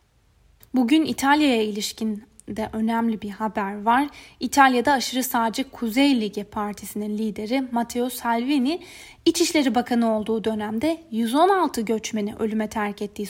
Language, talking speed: Turkish, 115 wpm